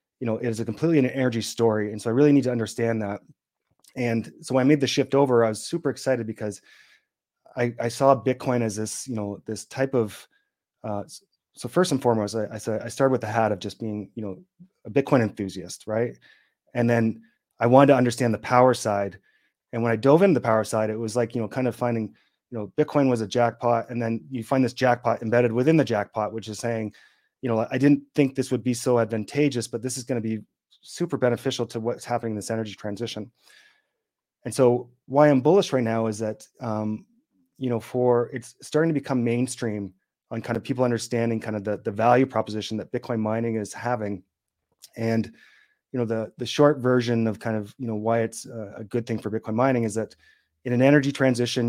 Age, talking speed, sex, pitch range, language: 30-49, 220 wpm, male, 110-130 Hz, English